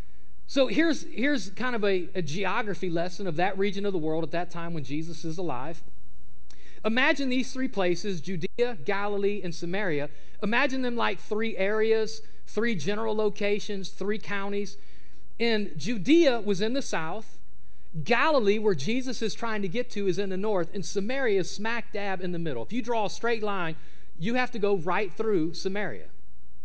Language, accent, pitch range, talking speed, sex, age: English, American, 180-235 Hz, 180 wpm, male, 40-59